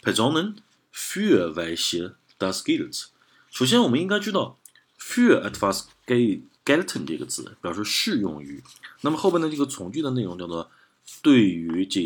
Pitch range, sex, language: 90-125 Hz, male, Chinese